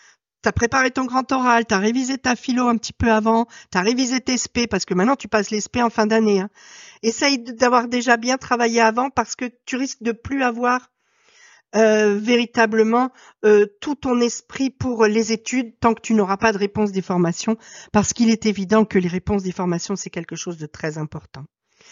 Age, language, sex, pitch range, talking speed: 50-69, French, female, 215-270 Hz, 210 wpm